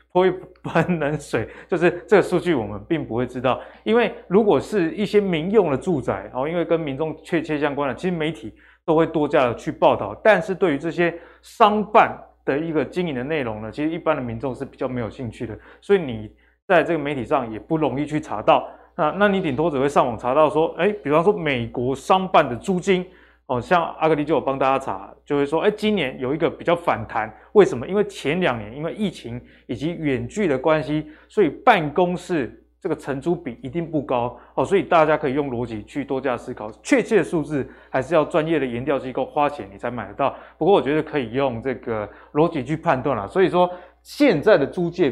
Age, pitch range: 20-39, 130-170 Hz